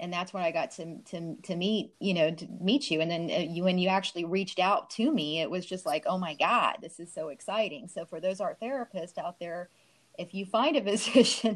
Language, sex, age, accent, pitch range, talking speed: English, female, 30-49, American, 165-210 Hz, 245 wpm